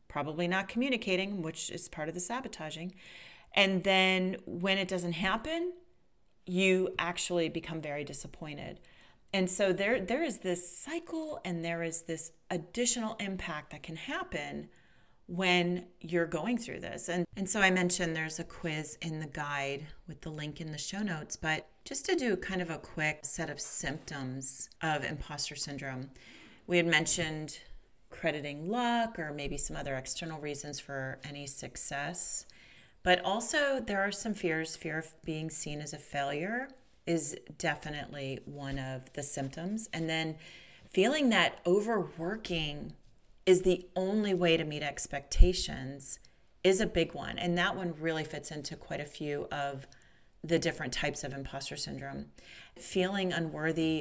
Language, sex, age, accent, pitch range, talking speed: English, female, 40-59, American, 150-185 Hz, 155 wpm